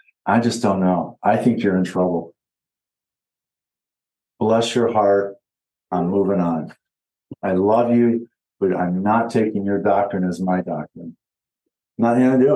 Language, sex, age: English, male, 50-69